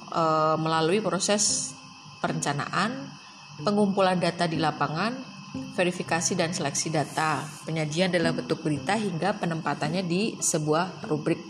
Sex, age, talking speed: female, 30-49, 105 wpm